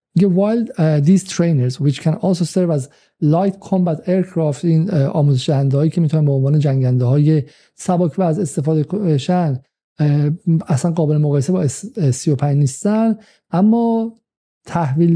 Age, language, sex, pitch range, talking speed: 50-69, Persian, male, 135-175 Hz, 130 wpm